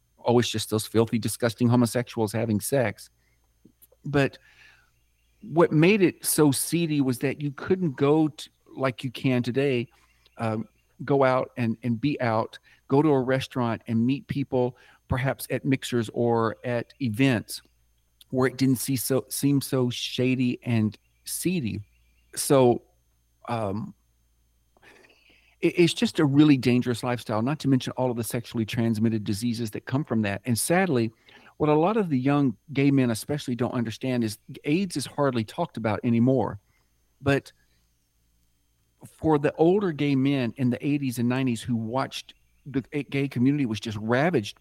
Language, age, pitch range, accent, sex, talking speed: English, 50-69, 110-135 Hz, American, male, 150 wpm